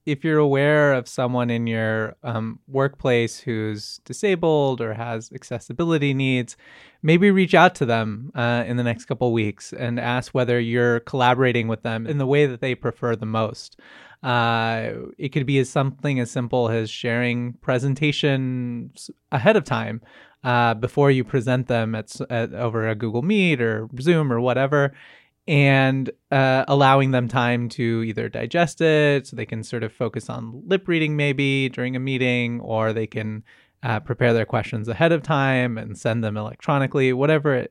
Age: 20-39